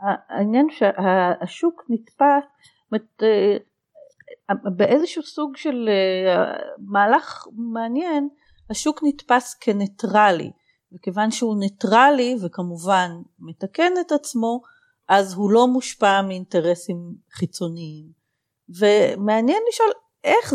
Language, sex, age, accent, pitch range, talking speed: Hebrew, female, 40-59, native, 180-245 Hz, 80 wpm